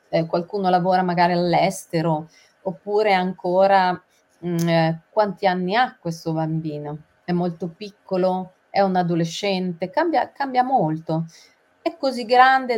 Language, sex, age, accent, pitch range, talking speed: Italian, female, 30-49, native, 170-215 Hz, 115 wpm